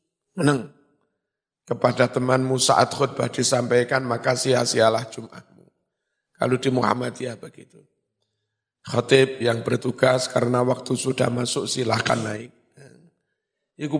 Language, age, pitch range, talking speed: Indonesian, 50-69, 125-150 Hz, 100 wpm